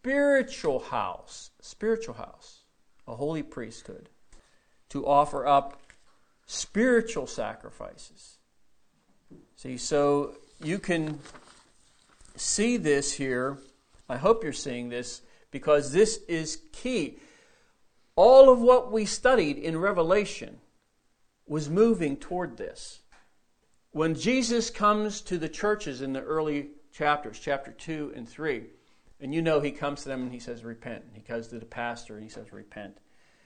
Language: English